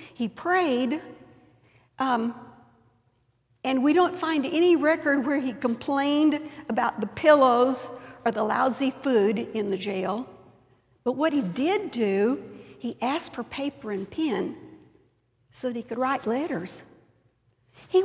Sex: female